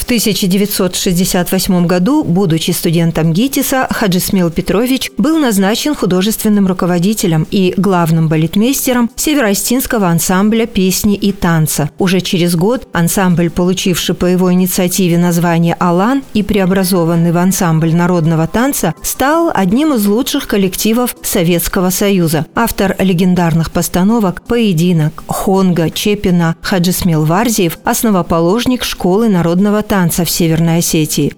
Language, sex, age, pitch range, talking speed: Russian, female, 40-59, 175-220 Hz, 115 wpm